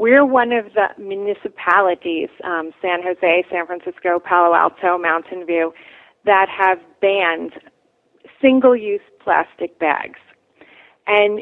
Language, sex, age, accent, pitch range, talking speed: English, female, 30-49, American, 180-245 Hz, 110 wpm